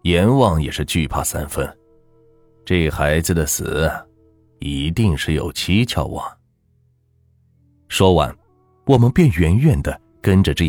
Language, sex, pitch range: Chinese, male, 80-125 Hz